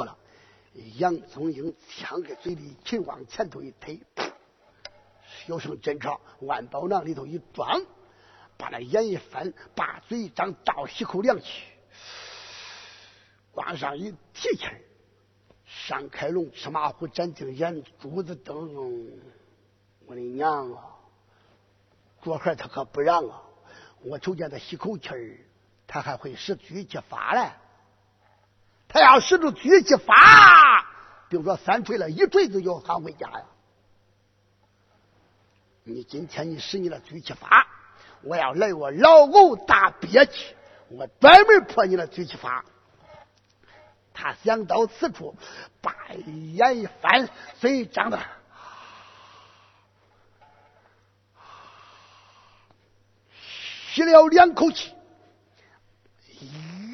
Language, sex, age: Chinese, male, 50-69